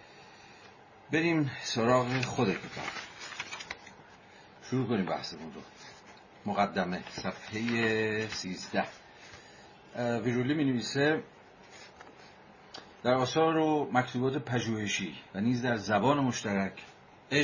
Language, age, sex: Persian, 50-69, male